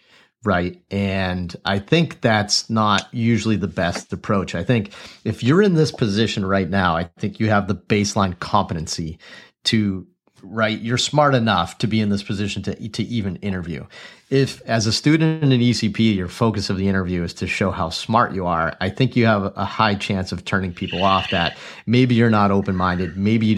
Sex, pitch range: male, 95-110 Hz